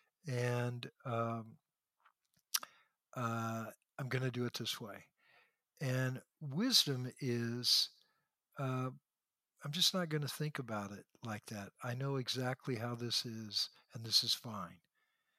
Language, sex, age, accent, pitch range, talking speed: English, male, 60-79, American, 120-155 Hz, 130 wpm